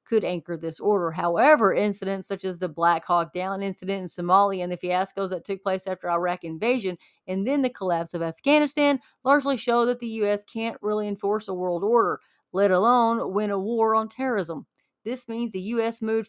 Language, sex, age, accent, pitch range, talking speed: English, female, 30-49, American, 185-220 Hz, 195 wpm